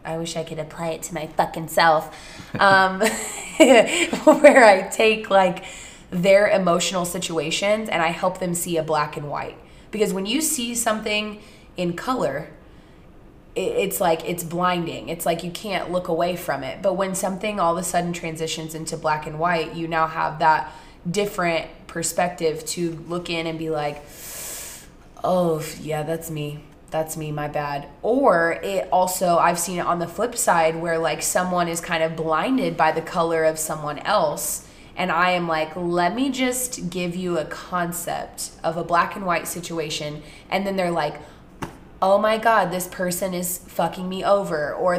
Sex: female